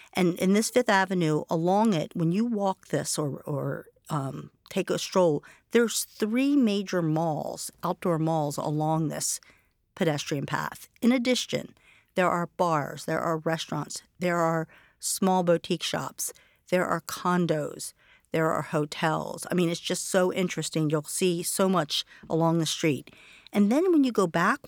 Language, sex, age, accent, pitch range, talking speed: English, female, 50-69, American, 165-215 Hz, 160 wpm